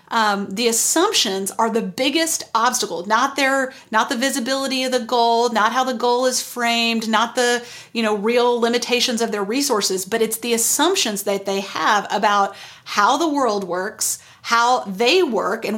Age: 40-59